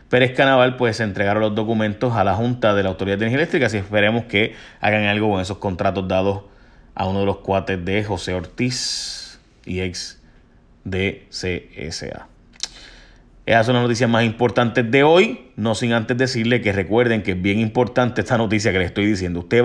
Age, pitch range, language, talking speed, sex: 30-49, 95-125 Hz, Spanish, 190 wpm, male